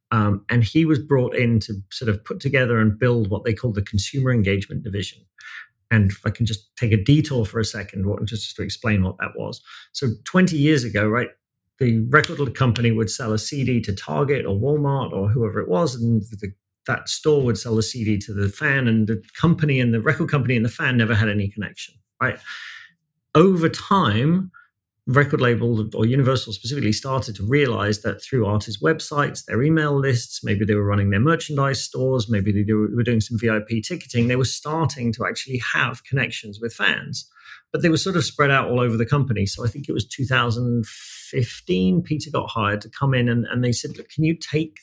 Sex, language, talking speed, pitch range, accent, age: male, English, 205 wpm, 110-140 Hz, British, 40-59